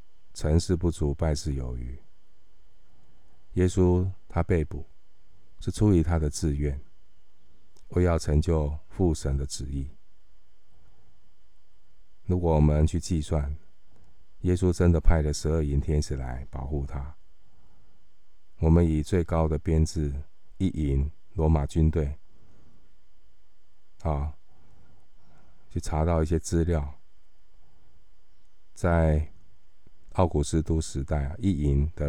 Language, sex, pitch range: Chinese, male, 75-90 Hz